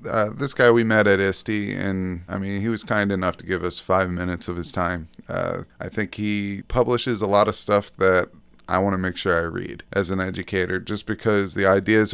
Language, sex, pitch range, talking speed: English, male, 90-105 Hz, 230 wpm